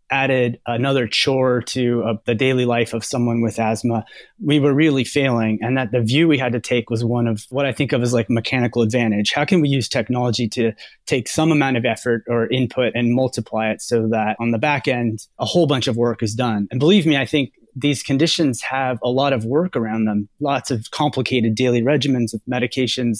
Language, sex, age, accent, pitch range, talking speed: English, male, 30-49, American, 115-135 Hz, 220 wpm